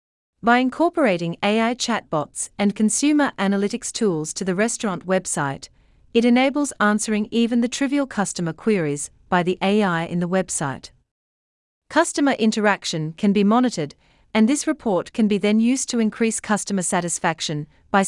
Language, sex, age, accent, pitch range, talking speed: English, female, 40-59, Australian, 165-240 Hz, 145 wpm